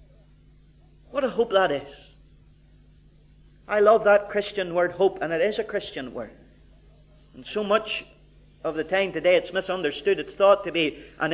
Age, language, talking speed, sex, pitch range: 40-59, English, 165 wpm, male, 165-250 Hz